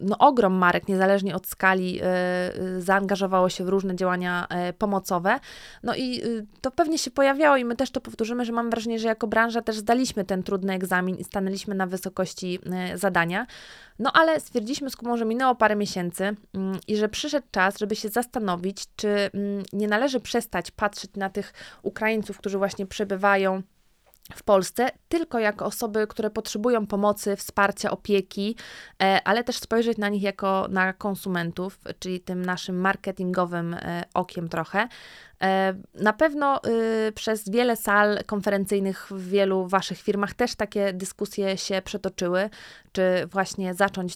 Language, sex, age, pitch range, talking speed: Polish, female, 20-39, 185-220 Hz, 145 wpm